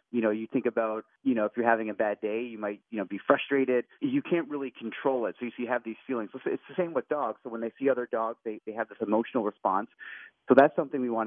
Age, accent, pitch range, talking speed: 30-49, American, 105-125 Hz, 275 wpm